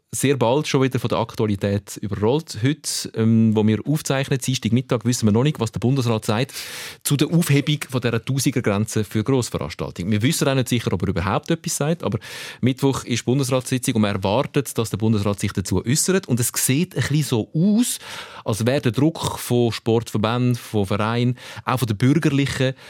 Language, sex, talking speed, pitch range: German, male, 195 wpm, 105-130 Hz